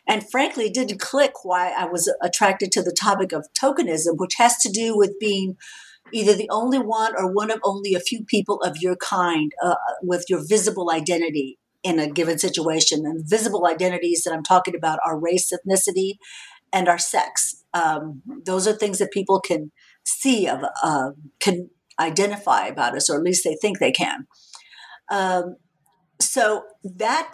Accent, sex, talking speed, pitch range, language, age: American, female, 175 wpm, 175-215 Hz, English, 50-69